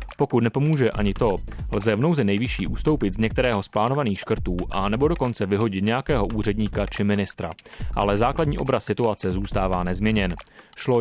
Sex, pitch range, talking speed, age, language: male, 100-115 Hz, 160 wpm, 30-49, Czech